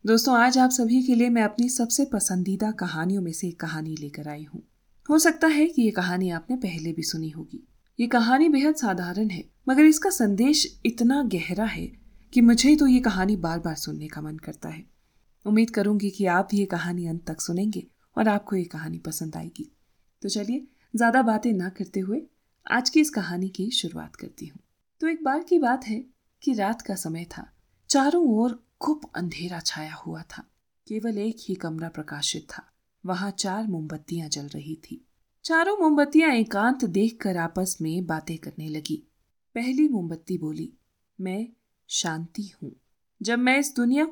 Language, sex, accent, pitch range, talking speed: Hindi, female, native, 170-250 Hz, 150 wpm